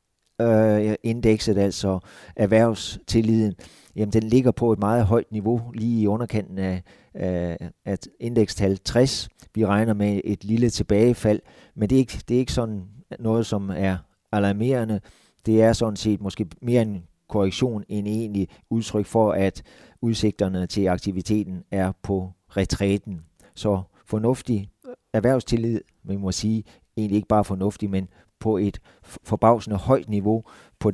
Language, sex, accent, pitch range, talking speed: Danish, male, native, 100-115 Hz, 140 wpm